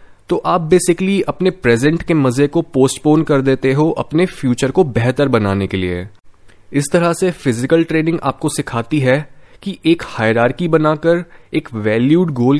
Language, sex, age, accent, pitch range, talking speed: Hindi, male, 20-39, native, 130-170 Hz, 160 wpm